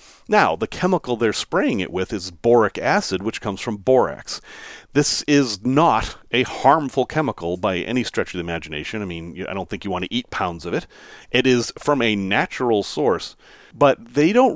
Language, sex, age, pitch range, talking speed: English, male, 40-59, 100-140 Hz, 195 wpm